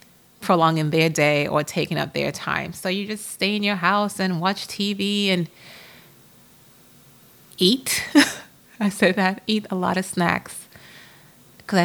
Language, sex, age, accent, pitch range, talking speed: English, female, 30-49, American, 160-200 Hz, 145 wpm